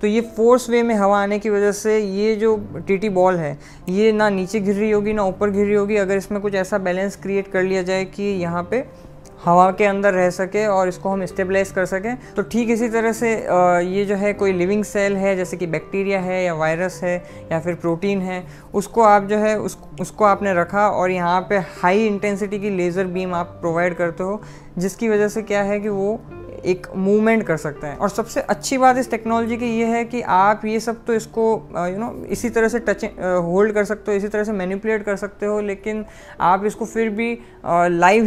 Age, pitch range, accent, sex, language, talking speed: 20-39, 180-210 Hz, native, female, Hindi, 225 wpm